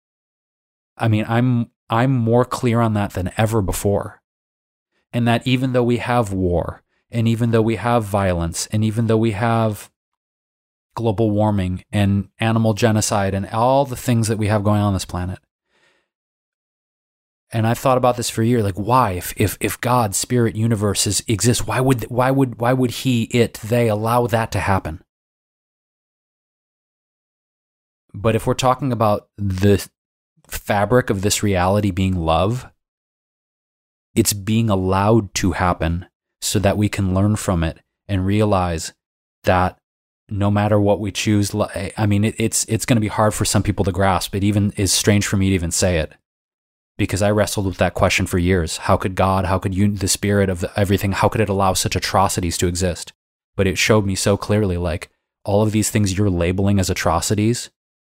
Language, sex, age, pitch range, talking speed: English, male, 30-49, 95-115 Hz, 175 wpm